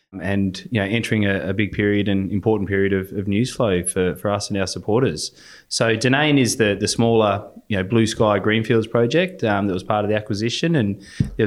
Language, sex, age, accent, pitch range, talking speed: English, male, 20-39, Australian, 95-110 Hz, 220 wpm